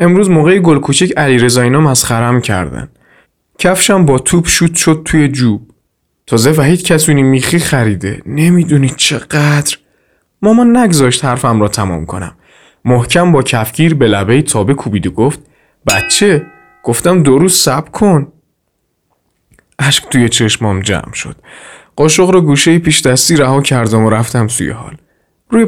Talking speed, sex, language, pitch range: 140 wpm, male, Persian, 115-160 Hz